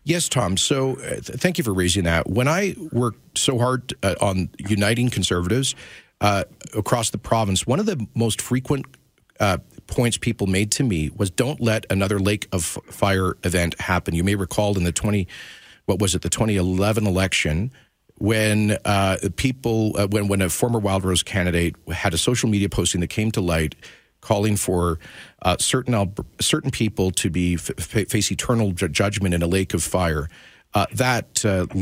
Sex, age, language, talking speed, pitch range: male, 40-59, English, 175 wpm, 95-115 Hz